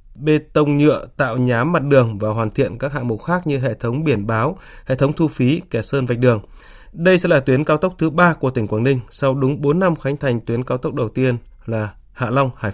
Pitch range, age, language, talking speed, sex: 125-155 Hz, 20-39, Vietnamese, 255 wpm, male